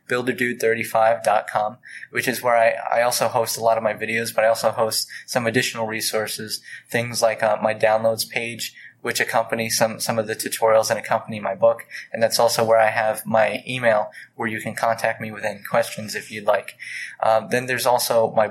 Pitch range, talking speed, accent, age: 110-120 Hz, 200 wpm, American, 20-39